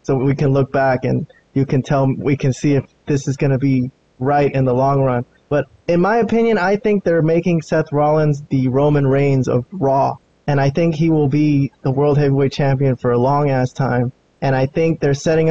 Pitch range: 135-160 Hz